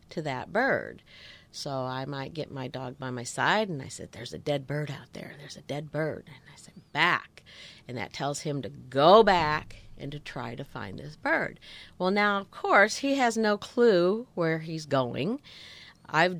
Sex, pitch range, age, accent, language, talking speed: female, 135-190 Hz, 50-69, American, English, 200 wpm